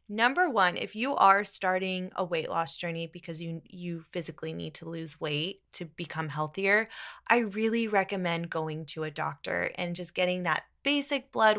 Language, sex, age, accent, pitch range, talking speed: English, female, 20-39, American, 170-220 Hz, 175 wpm